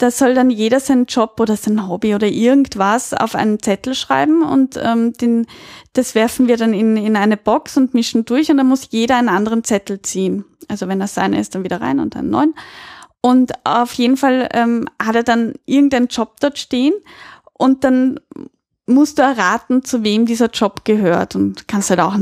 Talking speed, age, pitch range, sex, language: 200 wpm, 10-29, 210-260 Hz, female, German